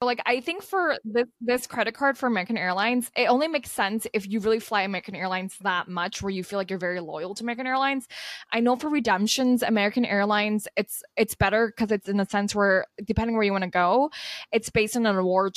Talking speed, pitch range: 230 wpm, 195-235 Hz